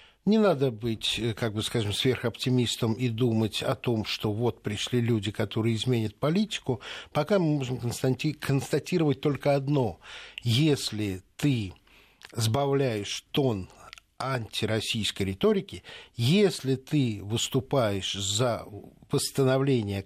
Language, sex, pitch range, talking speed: Russian, male, 110-150 Hz, 105 wpm